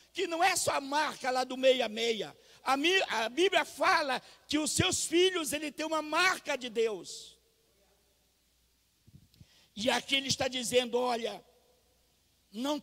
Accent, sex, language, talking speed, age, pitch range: Brazilian, male, Portuguese, 135 wpm, 60-79, 250-305 Hz